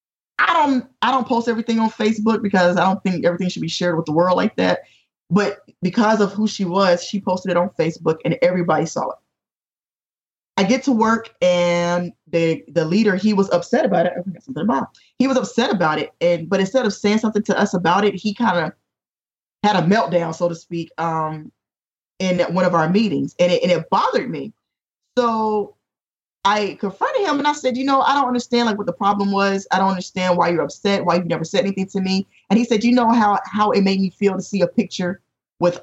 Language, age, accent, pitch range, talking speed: English, 20-39, American, 175-220 Hz, 230 wpm